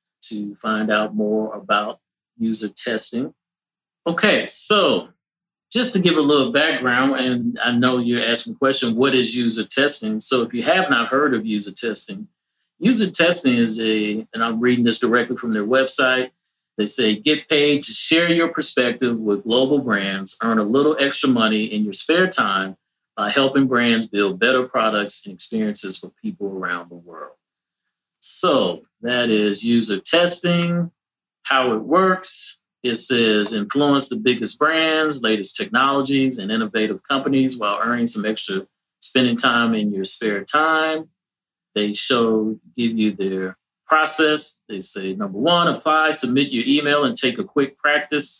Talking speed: 160 wpm